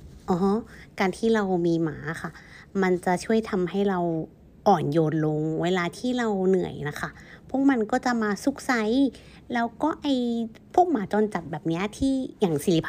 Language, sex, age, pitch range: Thai, female, 60-79, 170-235 Hz